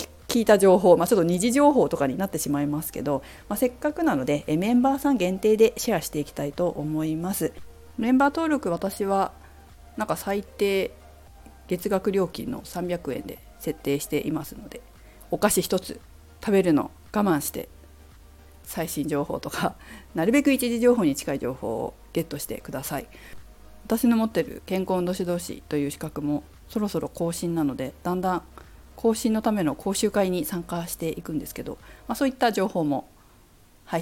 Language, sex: Japanese, female